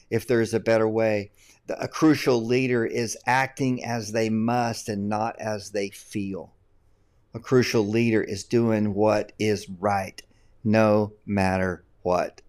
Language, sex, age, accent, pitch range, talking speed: English, male, 50-69, American, 105-125 Hz, 145 wpm